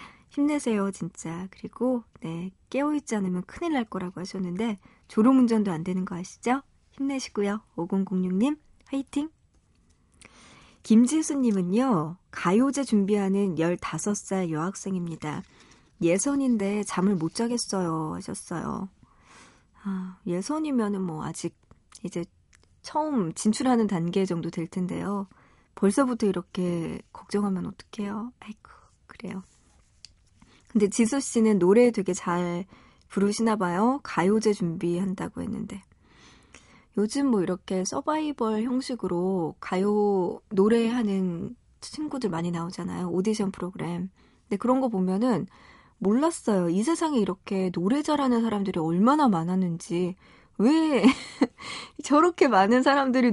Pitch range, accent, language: 185-245 Hz, native, Korean